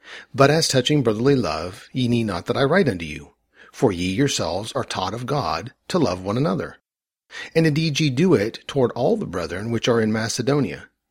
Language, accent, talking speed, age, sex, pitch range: English, American, 200 wpm, 40-59, male, 105-140 Hz